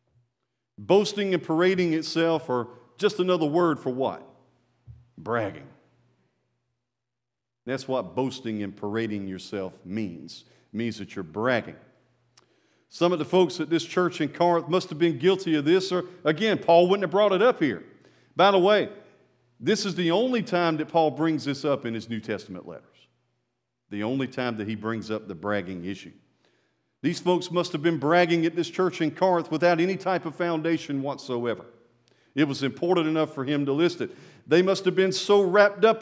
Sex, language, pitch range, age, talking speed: male, English, 130-185 Hz, 50-69, 180 wpm